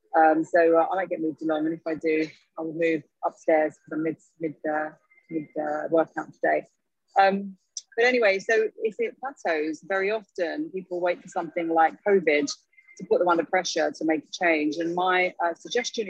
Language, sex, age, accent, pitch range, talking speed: English, female, 30-49, British, 160-180 Hz, 180 wpm